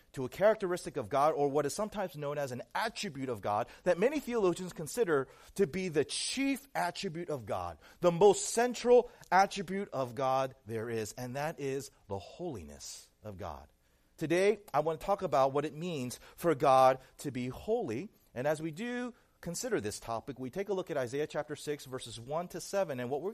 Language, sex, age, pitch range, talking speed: English, male, 40-59, 125-185 Hz, 200 wpm